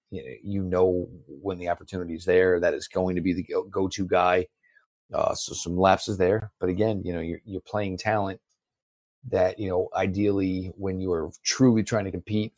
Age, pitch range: 40-59, 90-100 Hz